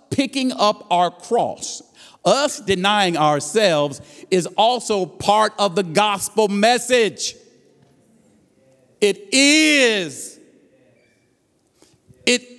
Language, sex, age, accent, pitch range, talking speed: English, male, 50-69, American, 155-240 Hz, 80 wpm